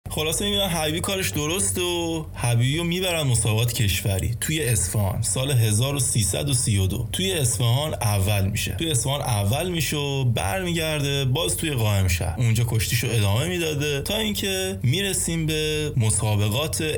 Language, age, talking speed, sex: Persian, 20-39, 130 wpm, male